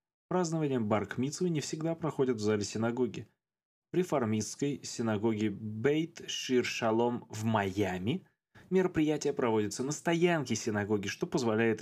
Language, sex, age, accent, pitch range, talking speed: Russian, male, 20-39, native, 110-165 Hz, 115 wpm